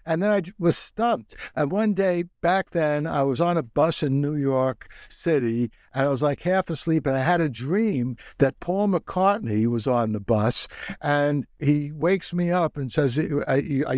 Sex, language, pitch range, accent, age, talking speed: male, English, 145-180 Hz, American, 60-79, 195 wpm